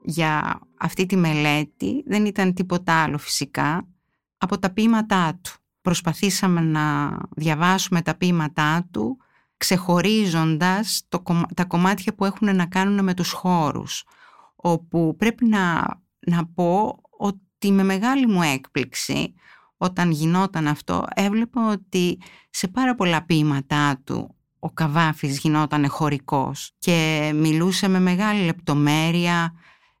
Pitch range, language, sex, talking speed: 150-185 Hz, Greek, female, 115 wpm